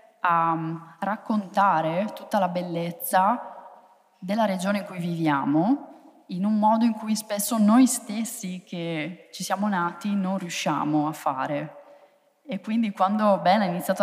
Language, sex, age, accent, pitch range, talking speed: Italian, female, 20-39, native, 170-215 Hz, 135 wpm